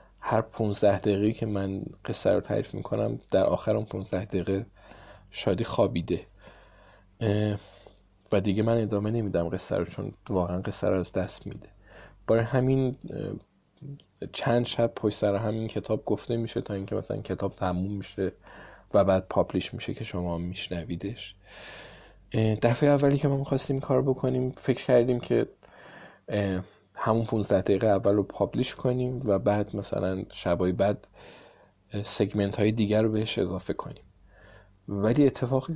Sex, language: male, Persian